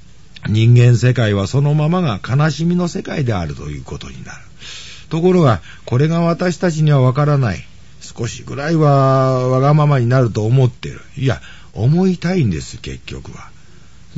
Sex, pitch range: male, 110-155 Hz